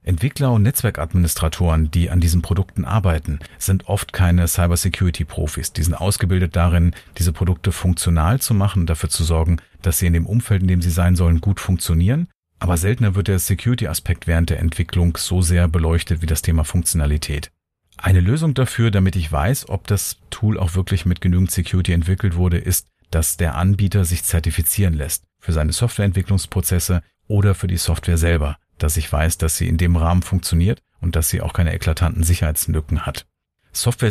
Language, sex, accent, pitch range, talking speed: German, male, German, 85-95 Hz, 180 wpm